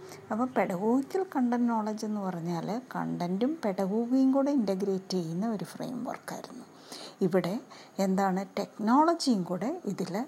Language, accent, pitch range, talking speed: Malayalam, native, 185-245 Hz, 110 wpm